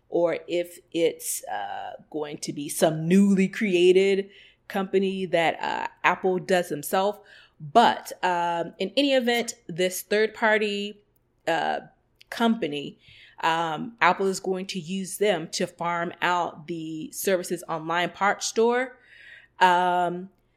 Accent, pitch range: American, 170-205 Hz